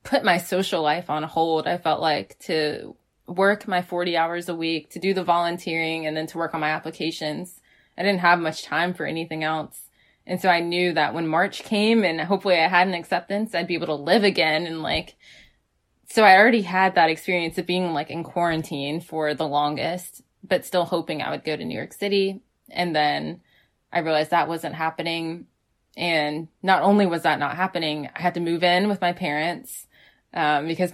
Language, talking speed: English, 205 wpm